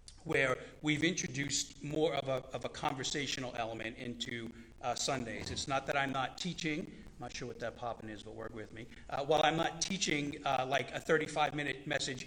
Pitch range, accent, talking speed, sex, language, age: 130-160 Hz, American, 195 wpm, male, English, 40-59